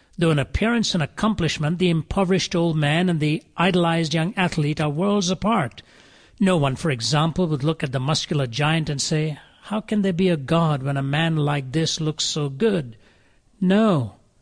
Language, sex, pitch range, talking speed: English, male, 150-195 Hz, 185 wpm